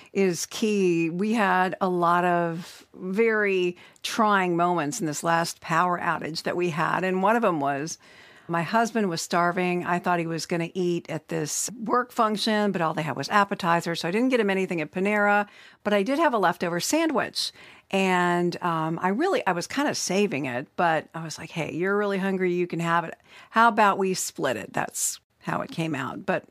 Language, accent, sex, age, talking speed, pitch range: English, American, female, 50-69, 210 wpm, 170-210 Hz